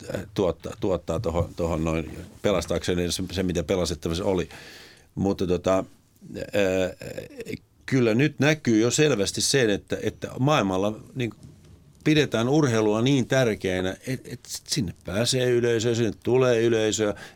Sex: male